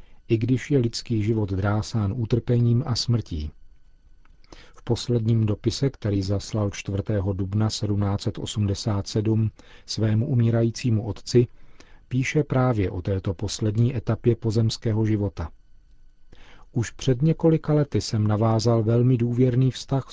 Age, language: 40-59, Czech